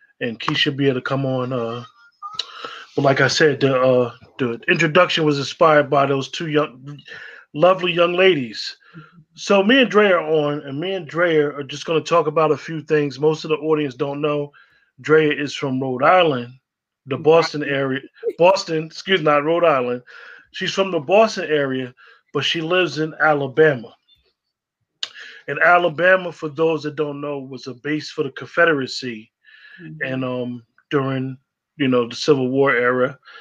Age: 20-39